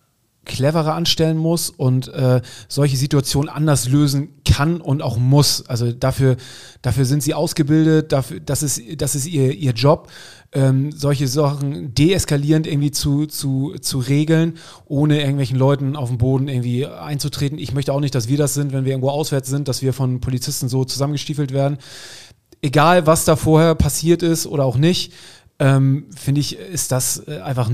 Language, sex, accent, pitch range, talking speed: German, male, German, 135-150 Hz, 165 wpm